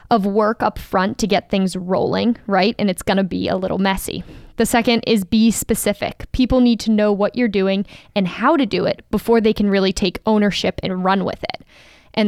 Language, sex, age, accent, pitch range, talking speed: English, female, 10-29, American, 195-230 Hz, 220 wpm